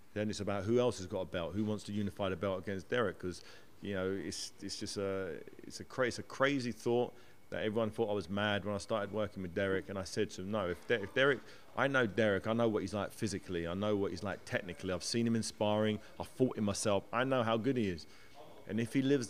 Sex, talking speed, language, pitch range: male, 270 wpm, English, 95-110 Hz